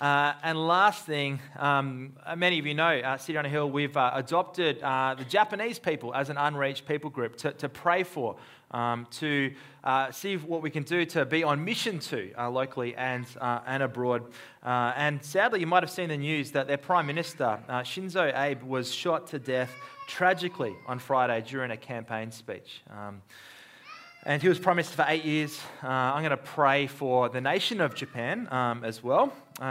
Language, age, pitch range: English, 20-39, 120-150 Hz